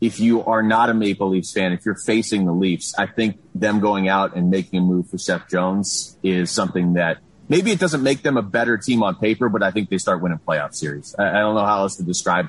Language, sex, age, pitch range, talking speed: English, male, 30-49, 100-135 Hz, 260 wpm